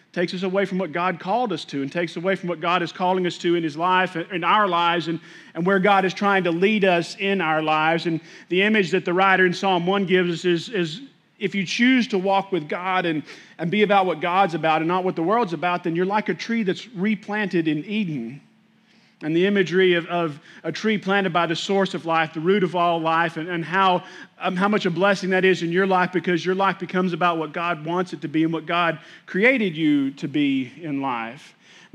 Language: English